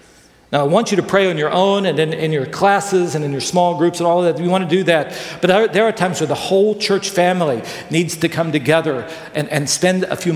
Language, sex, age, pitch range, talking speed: English, male, 50-69, 150-180 Hz, 265 wpm